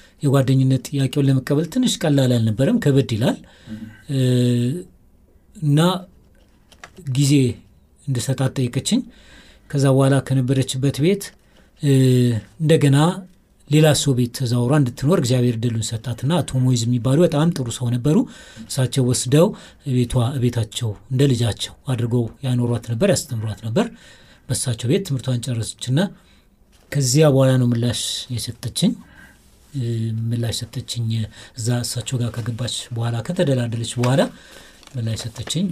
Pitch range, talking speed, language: 115-145 Hz, 100 wpm, Amharic